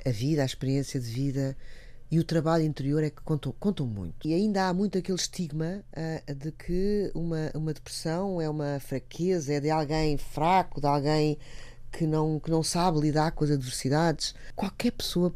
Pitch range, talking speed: 140-200 Hz, 180 wpm